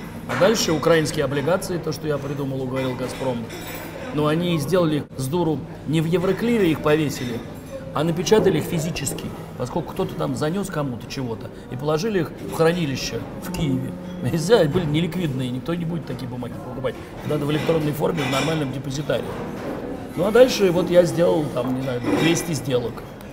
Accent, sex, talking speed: native, male, 165 wpm